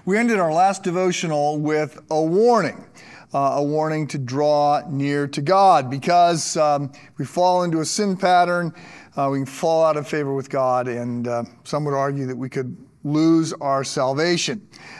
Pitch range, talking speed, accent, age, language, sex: 140-180 Hz, 170 wpm, American, 50-69, English, male